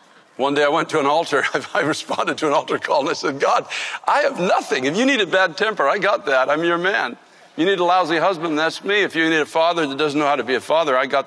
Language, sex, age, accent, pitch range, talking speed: English, male, 60-79, American, 140-175 Hz, 290 wpm